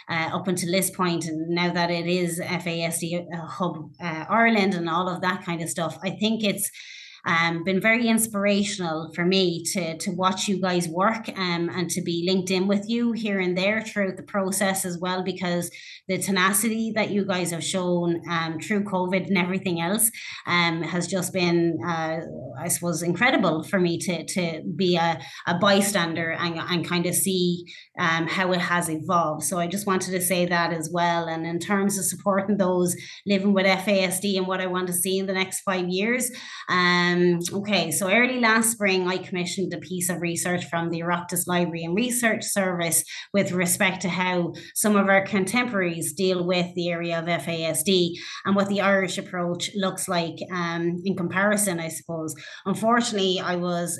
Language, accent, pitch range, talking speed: English, Irish, 170-195 Hz, 190 wpm